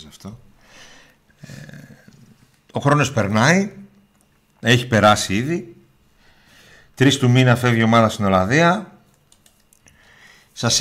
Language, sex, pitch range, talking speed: Greek, male, 95-125 Hz, 85 wpm